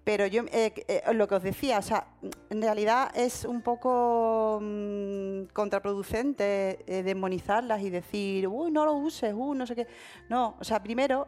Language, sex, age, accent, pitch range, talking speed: Spanish, female, 30-49, Spanish, 185-240 Hz, 170 wpm